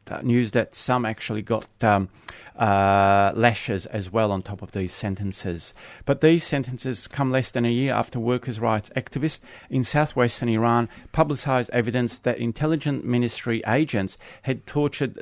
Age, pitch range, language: 30-49, 100-125 Hz, English